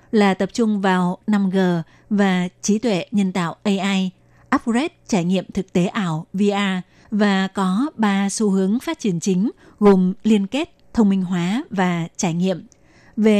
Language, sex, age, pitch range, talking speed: Vietnamese, female, 20-39, 185-220 Hz, 160 wpm